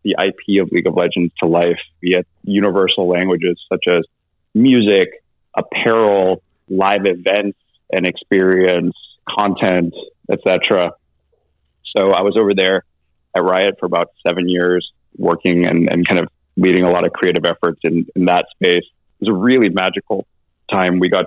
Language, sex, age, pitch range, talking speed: English, male, 30-49, 90-100 Hz, 160 wpm